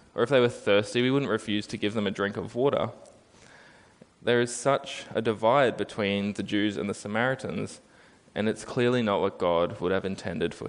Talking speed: 200 wpm